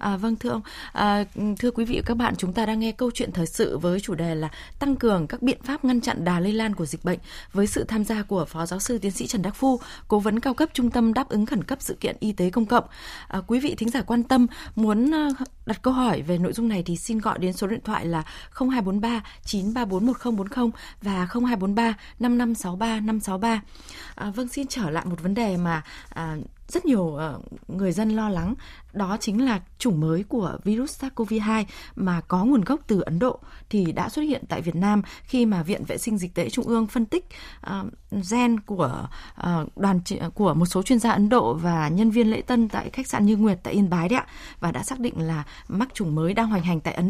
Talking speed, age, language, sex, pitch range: 230 wpm, 20-39, Vietnamese, female, 185-240 Hz